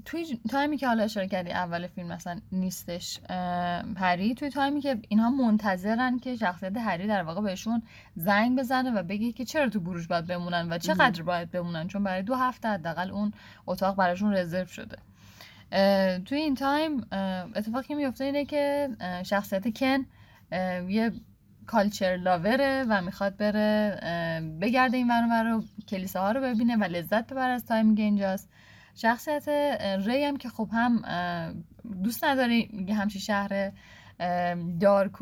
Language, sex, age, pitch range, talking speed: English, female, 10-29, 180-235 Hz, 145 wpm